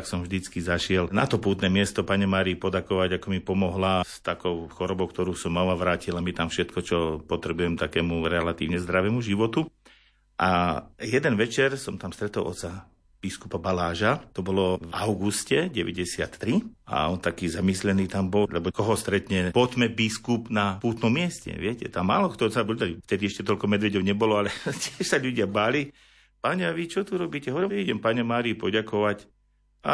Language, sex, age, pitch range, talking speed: Slovak, male, 50-69, 90-115 Hz, 170 wpm